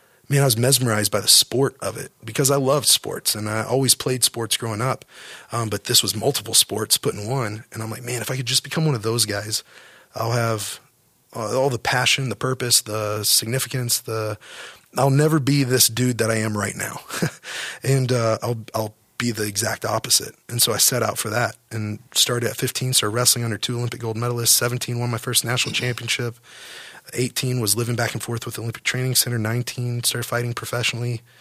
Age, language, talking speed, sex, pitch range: 30-49, English, 215 wpm, male, 110-130 Hz